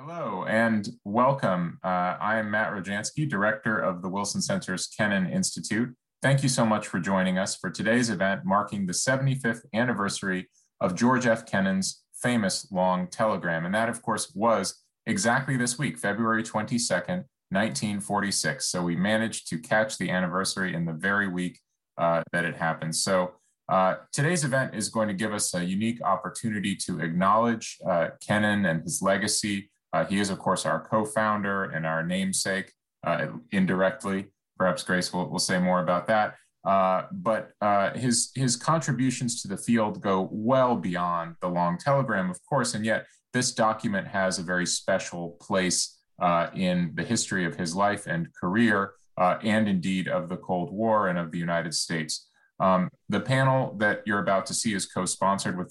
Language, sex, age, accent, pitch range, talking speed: English, male, 30-49, American, 95-125 Hz, 170 wpm